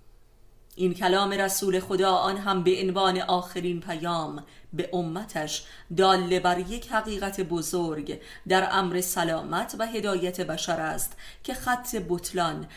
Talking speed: 125 wpm